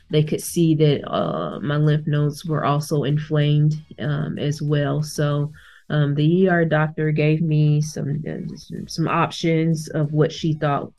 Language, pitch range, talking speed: English, 145-165 Hz, 160 wpm